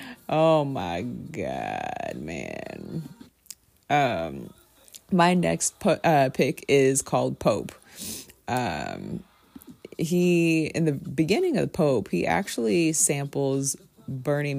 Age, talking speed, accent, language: 30-49, 100 wpm, American, English